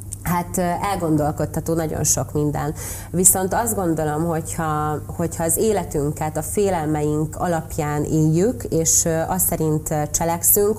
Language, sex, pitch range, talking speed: Hungarian, female, 155-185 Hz, 110 wpm